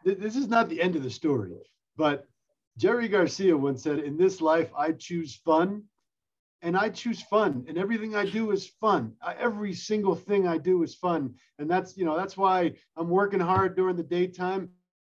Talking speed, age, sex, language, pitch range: 195 wpm, 40-59, male, English, 155-195 Hz